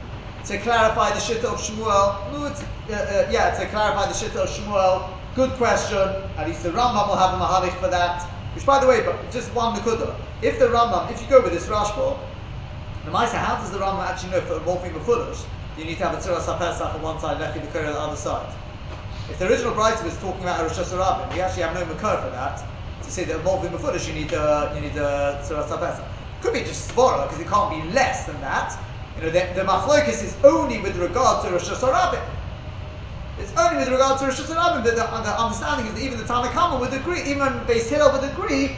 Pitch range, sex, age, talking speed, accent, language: 175-270 Hz, male, 30-49, 230 wpm, British, English